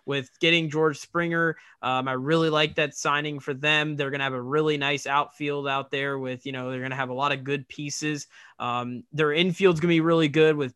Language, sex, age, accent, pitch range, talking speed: English, male, 20-39, American, 130-155 Hz, 225 wpm